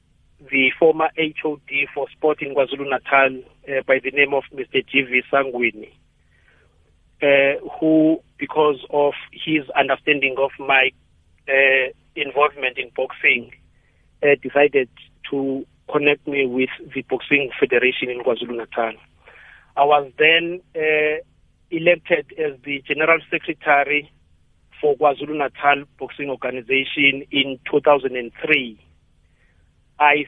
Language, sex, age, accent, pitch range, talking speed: English, male, 40-59, South African, 130-150 Hz, 100 wpm